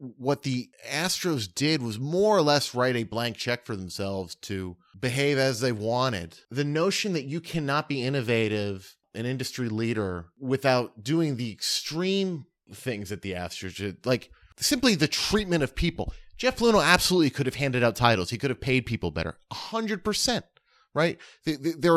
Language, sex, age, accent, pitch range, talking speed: English, male, 30-49, American, 105-145 Hz, 170 wpm